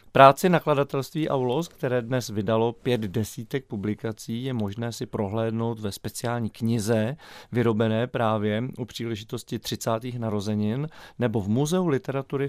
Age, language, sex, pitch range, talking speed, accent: 40-59, Czech, male, 115-135 Hz, 125 wpm, native